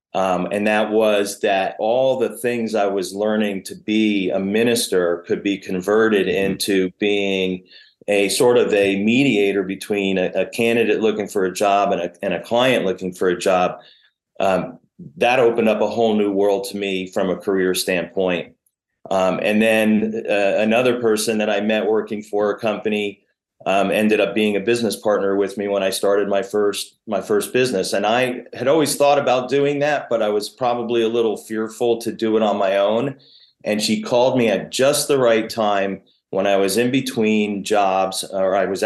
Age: 30-49